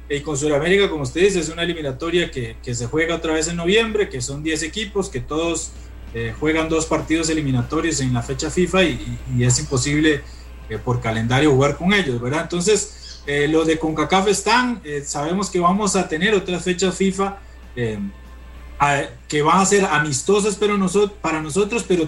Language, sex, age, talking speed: Spanish, male, 30-49, 195 wpm